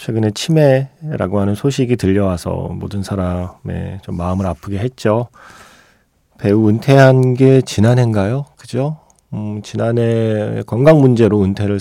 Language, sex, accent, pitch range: Korean, male, native, 95-125 Hz